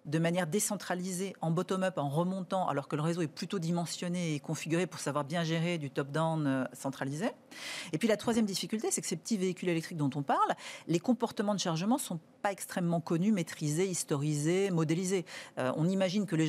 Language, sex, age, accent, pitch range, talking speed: French, female, 40-59, French, 160-210 Hz, 195 wpm